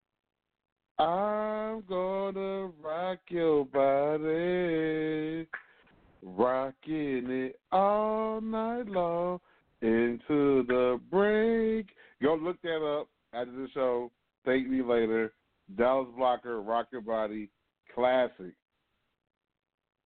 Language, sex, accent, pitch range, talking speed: English, male, American, 130-180 Hz, 85 wpm